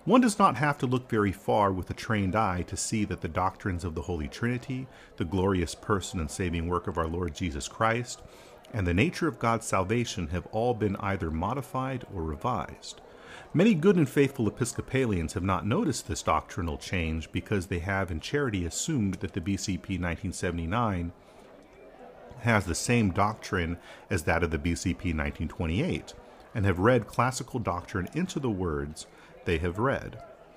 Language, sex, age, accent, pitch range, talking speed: English, male, 40-59, American, 85-115 Hz, 170 wpm